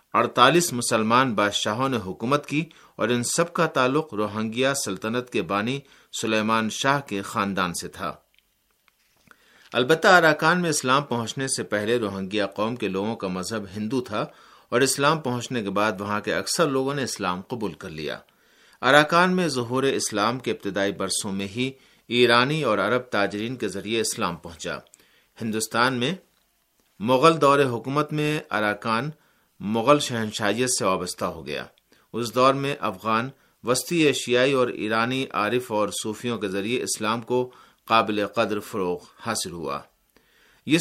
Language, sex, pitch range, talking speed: Urdu, male, 105-135 Hz, 150 wpm